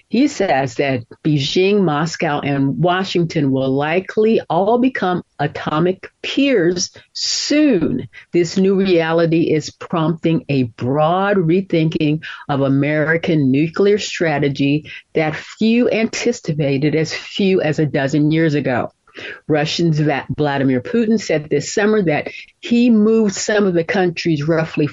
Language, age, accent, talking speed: English, 50-69, American, 120 wpm